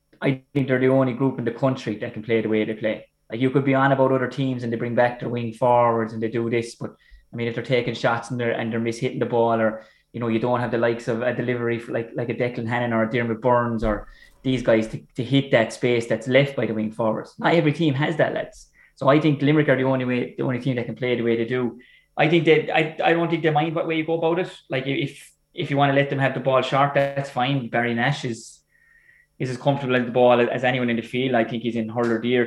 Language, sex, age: English, male, 20-39